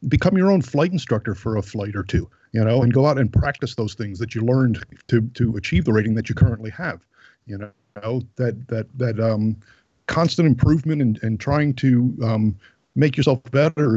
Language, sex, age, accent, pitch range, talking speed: English, male, 50-69, American, 110-140 Hz, 200 wpm